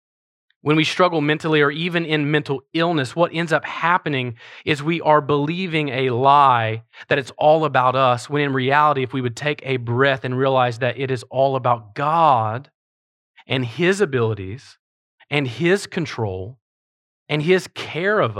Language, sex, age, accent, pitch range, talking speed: English, male, 30-49, American, 125-155 Hz, 165 wpm